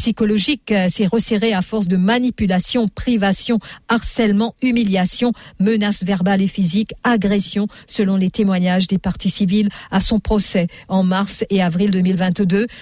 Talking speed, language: 135 wpm, English